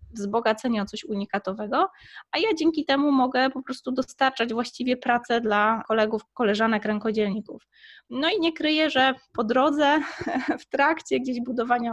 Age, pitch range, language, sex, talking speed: 20-39, 220-260 Hz, Polish, female, 145 wpm